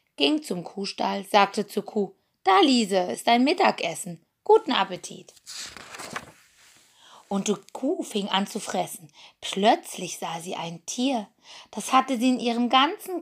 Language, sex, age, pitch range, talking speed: German, female, 20-39, 180-245 Hz, 140 wpm